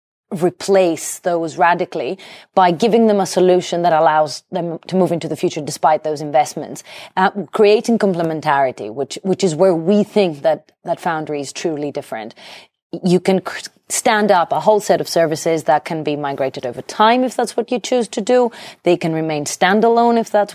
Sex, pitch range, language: female, 150-195 Hz, English